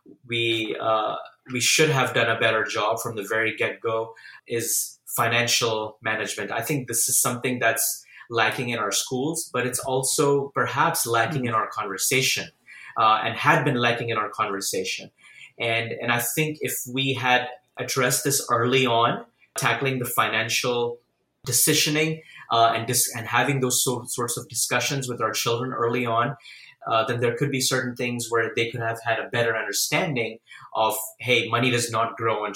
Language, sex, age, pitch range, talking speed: English, male, 20-39, 115-130 Hz, 175 wpm